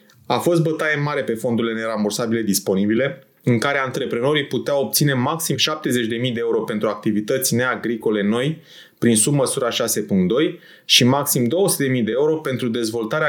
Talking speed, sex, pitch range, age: 140 wpm, male, 120-160 Hz, 20-39